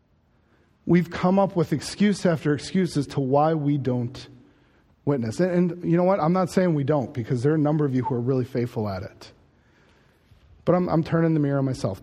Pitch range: 135-160 Hz